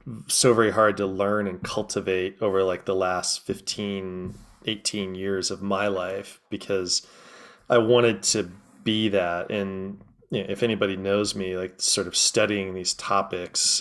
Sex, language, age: male, English, 20-39